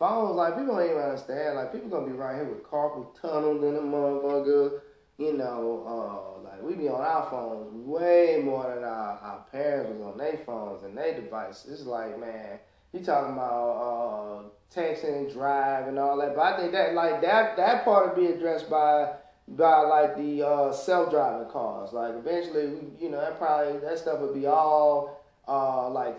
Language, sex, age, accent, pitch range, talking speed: English, male, 20-39, American, 145-185 Hz, 195 wpm